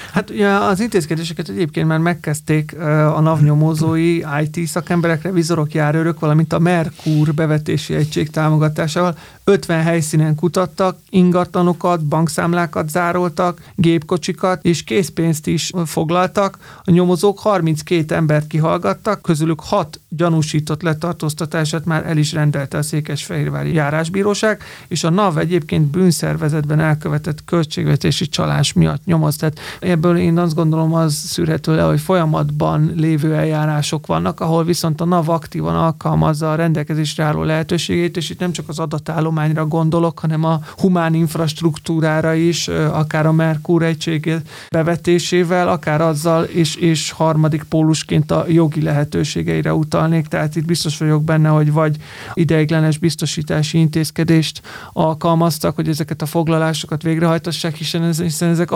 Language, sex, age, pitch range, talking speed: Hungarian, male, 30-49, 155-170 Hz, 125 wpm